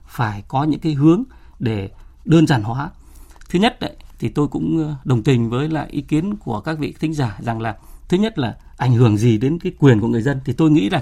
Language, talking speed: Vietnamese, 240 wpm